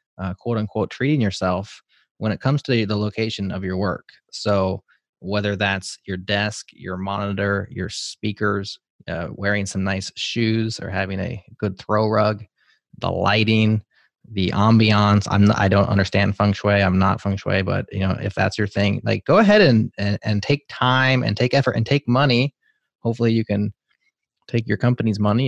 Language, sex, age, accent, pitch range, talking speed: English, male, 20-39, American, 100-120 Hz, 180 wpm